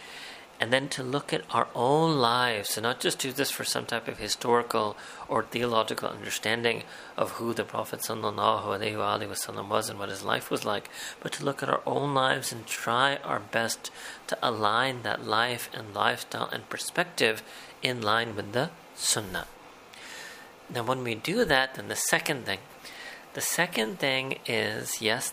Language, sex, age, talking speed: English, male, 40-59, 165 wpm